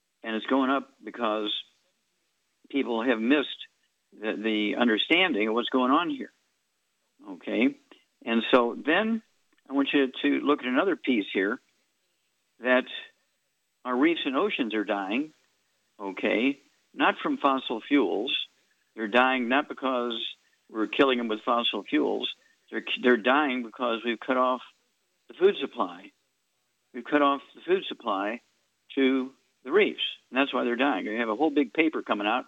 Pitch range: 115-140 Hz